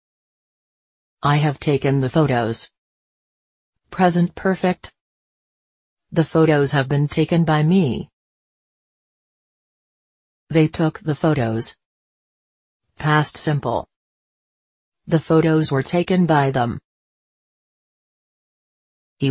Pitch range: 125-160 Hz